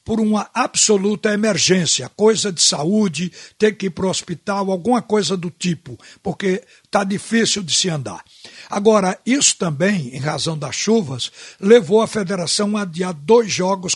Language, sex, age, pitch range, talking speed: Portuguese, male, 60-79, 170-210 Hz, 160 wpm